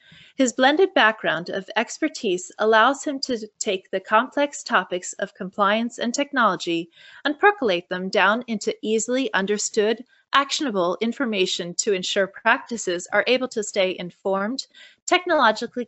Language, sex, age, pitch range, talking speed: English, female, 30-49, 195-265 Hz, 130 wpm